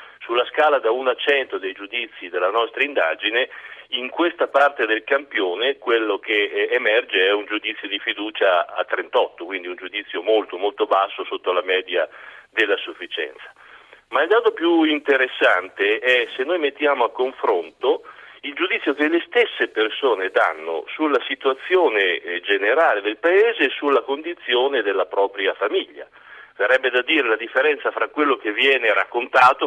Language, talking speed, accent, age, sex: Italian, 155 wpm, native, 40-59, male